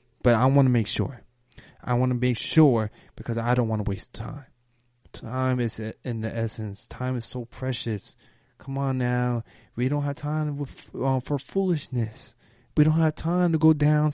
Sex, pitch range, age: male, 115-140 Hz, 20-39